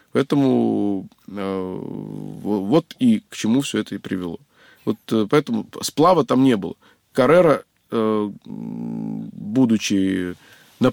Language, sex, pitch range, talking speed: Russian, male, 110-155 Hz, 110 wpm